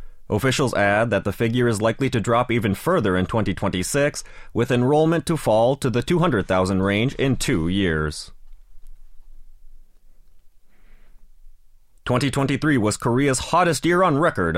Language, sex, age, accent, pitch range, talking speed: English, male, 30-49, American, 95-135 Hz, 130 wpm